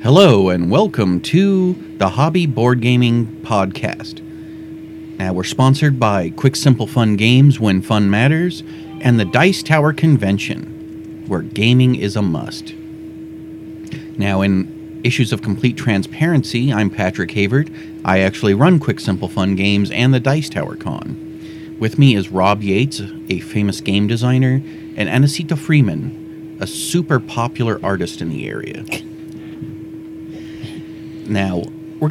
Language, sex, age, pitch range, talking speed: English, male, 30-49, 105-160 Hz, 135 wpm